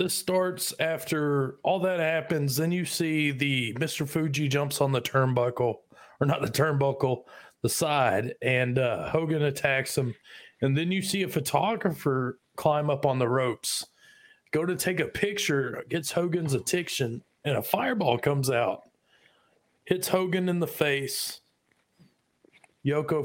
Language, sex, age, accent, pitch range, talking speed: English, male, 40-59, American, 135-170 Hz, 145 wpm